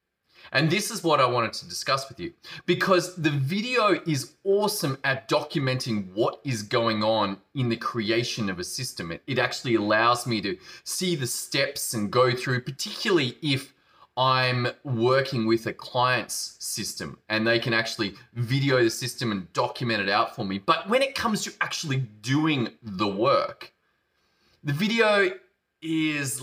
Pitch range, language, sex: 120-170 Hz, English, male